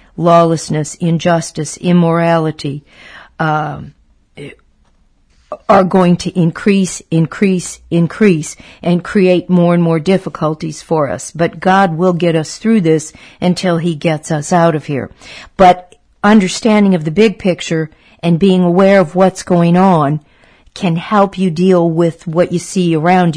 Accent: American